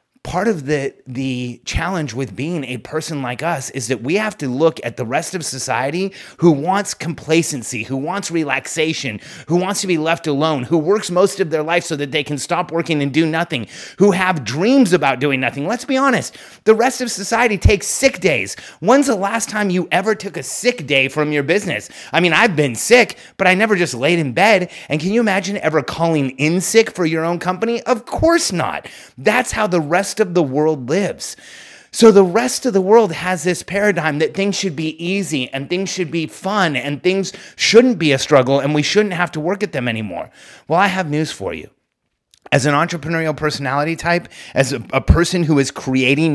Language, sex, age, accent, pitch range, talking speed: English, male, 30-49, American, 140-190 Hz, 215 wpm